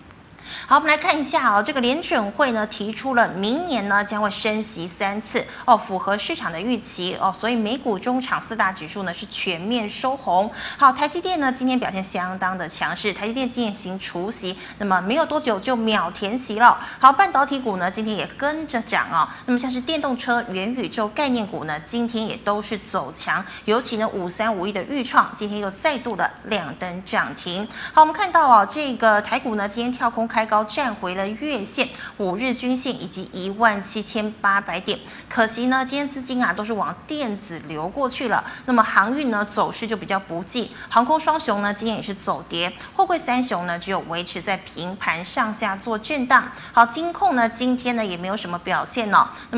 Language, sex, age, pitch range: Chinese, female, 20-39, 195-255 Hz